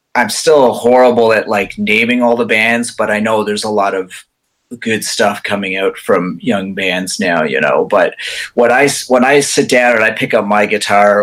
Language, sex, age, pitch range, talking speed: English, male, 30-49, 105-130 Hz, 210 wpm